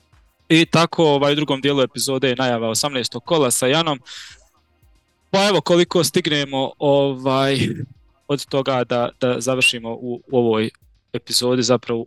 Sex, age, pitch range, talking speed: male, 20-39, 120-140 Hz, 140 wpm